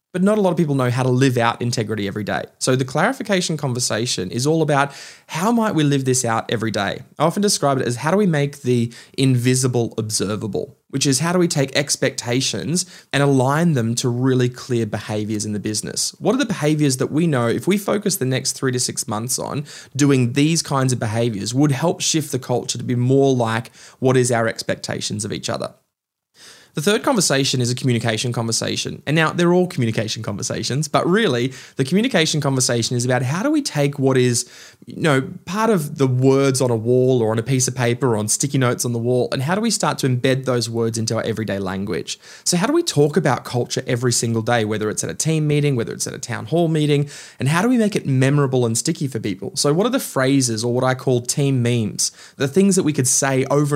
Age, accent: 20-39, Australian